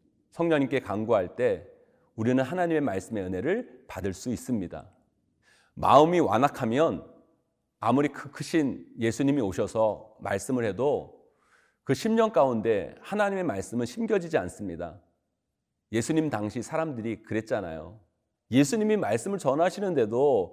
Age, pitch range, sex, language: 40-59, 110-170 Hz, male, Korean